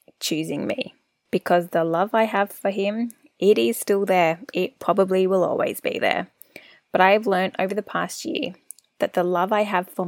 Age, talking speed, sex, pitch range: 10-29, 195 wpm, female, 180-230 Hz